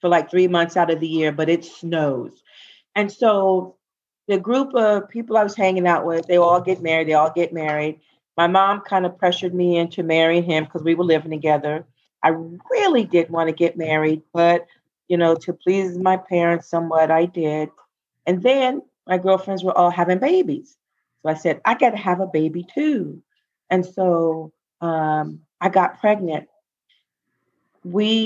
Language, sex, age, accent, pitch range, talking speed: English, female, 40-59, American, 165-195 Hz, 185 wpm